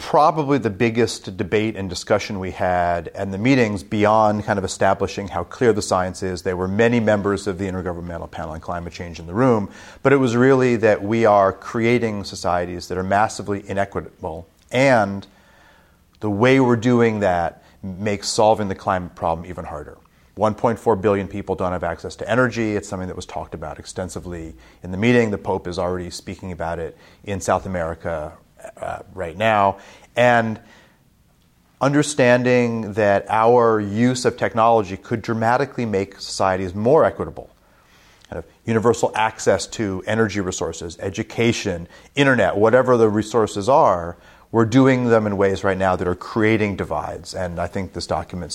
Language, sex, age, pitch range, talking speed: English, male, 30-49, 90-115 Hz, 165 wpm